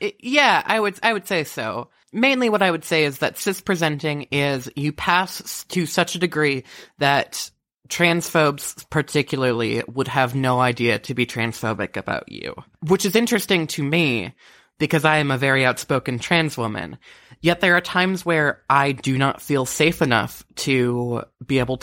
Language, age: English, 20-39